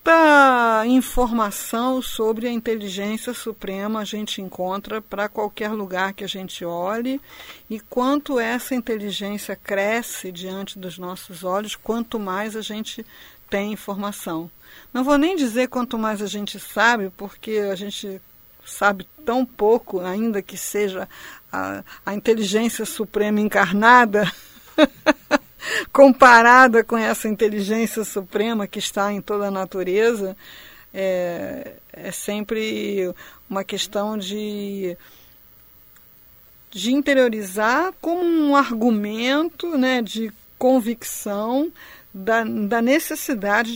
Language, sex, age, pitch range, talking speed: Portuguese, female, 50-69, 195-240 Hz, 110 wpm